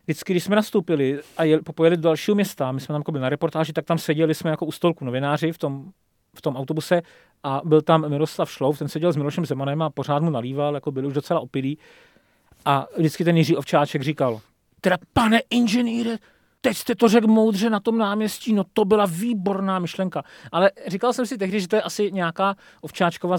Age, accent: 40-59, native